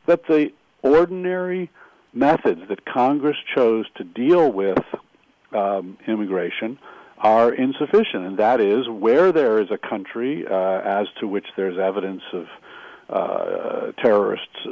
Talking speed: 130 wpm